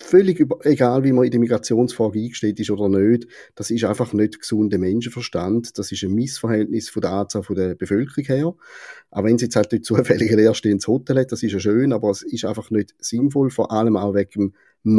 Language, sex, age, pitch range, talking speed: German, male, 30-49, 105-125 Hz, 210 wpm